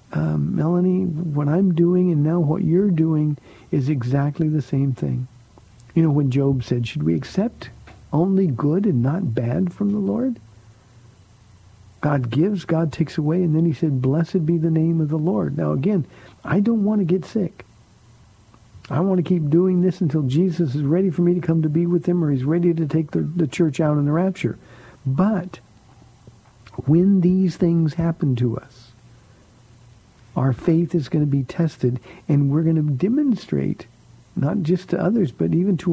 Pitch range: 125-170 Hz